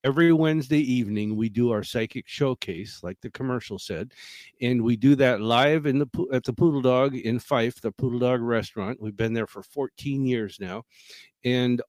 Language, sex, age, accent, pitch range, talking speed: English, male, 50-69, American, 115-145 Hz, 175 wpm